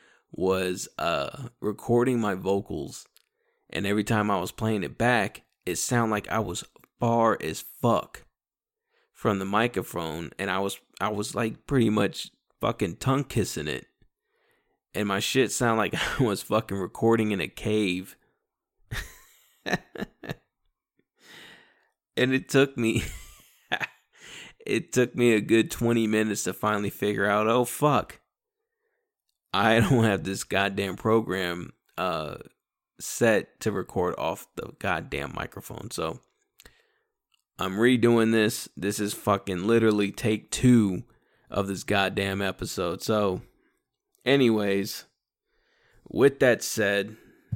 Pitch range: 100-120 Hz